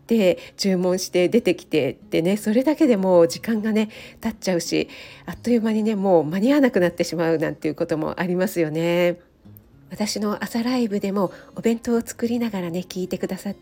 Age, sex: 50-69, female